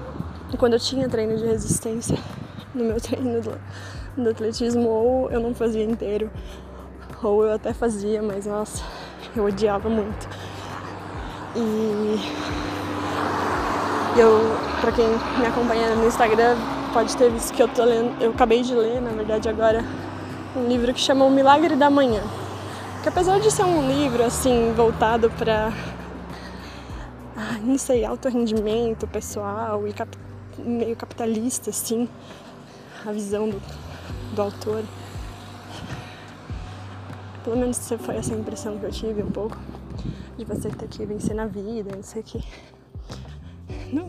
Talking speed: 135 wpm